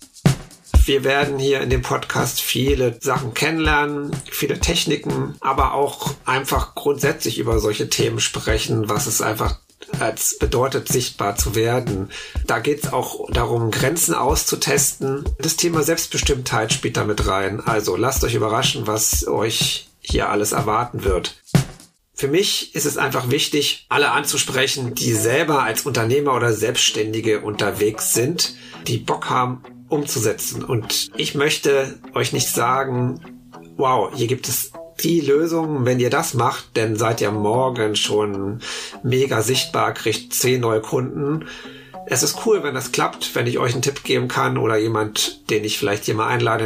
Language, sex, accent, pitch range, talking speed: German, male, German, 110-140 Hz, 155 wpm